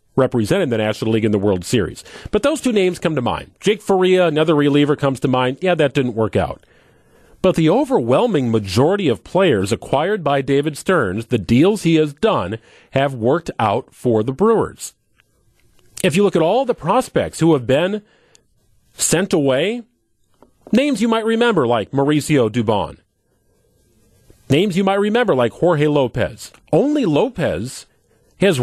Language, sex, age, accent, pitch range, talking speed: English, male, 40-59, American, 125-175 Hz, 160 wpm